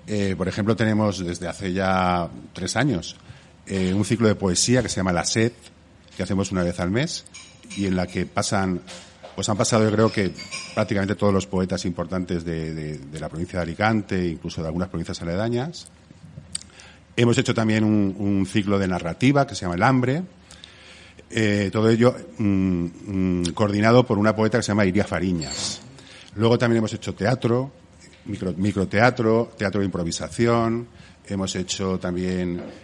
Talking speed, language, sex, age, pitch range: 170 wpm, Spanish, male, 50-69, 90-110 Hz